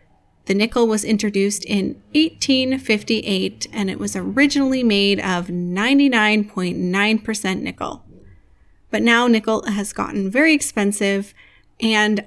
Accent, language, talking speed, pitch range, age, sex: American, English, 110 wpm, 195-245 Hz, 30-49, female